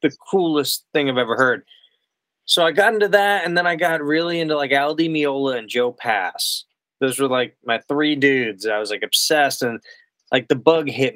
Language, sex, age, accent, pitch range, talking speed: English, male, 20-39, American, 115-150 Hz, 205 wpm